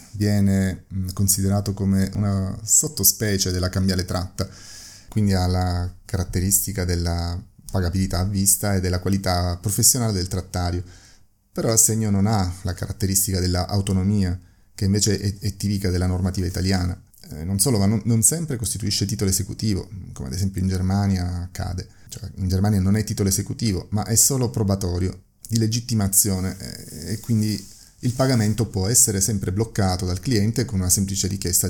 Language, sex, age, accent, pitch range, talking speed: Italian, male, 30-49, native, 95-110 Hz, 145 wpm